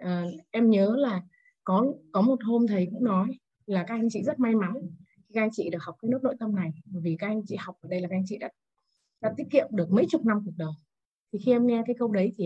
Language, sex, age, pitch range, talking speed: Vietnamese, female, 20-39, 185-240 Hz, 285 wpm